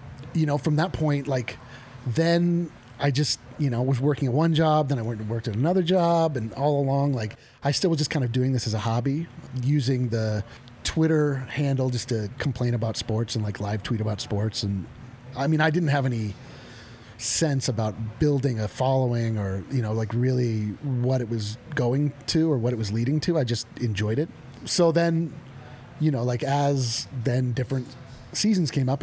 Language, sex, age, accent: English, male, 30-49, American